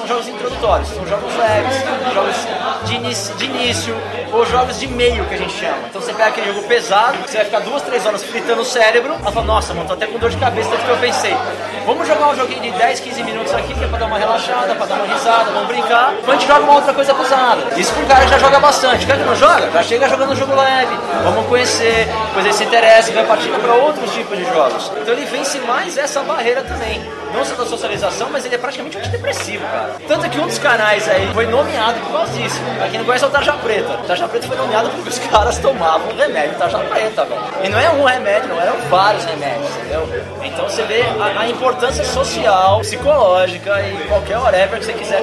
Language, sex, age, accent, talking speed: Portuguese, male, 20-39, Brazilian, 240 wpm